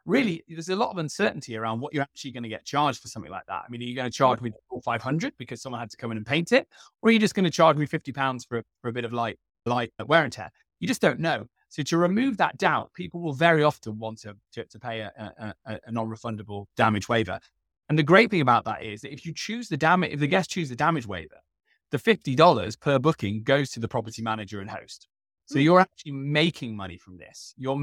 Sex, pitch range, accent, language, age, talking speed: male, 110-145 Hz, British, English, 20-39, 255 wpm